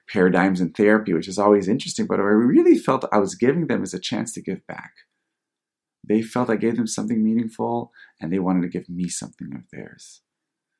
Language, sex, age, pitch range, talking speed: English, male, 30-49, 90-115 Hz, 205 wpm